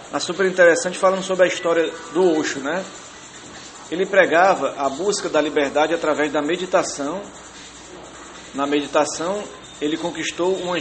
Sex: male